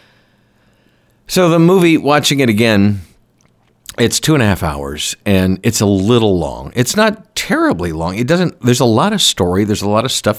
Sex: male